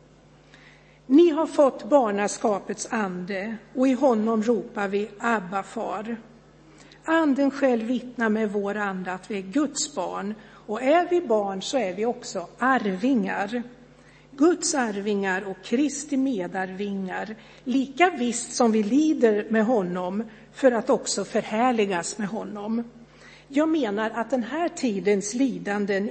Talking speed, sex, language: 130 wpm, female, Swedish